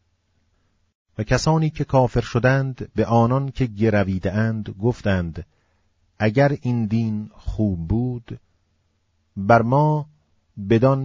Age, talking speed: 40-59, 100 wpm